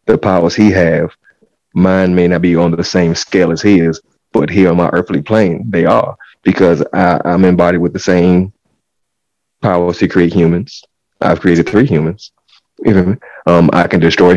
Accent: American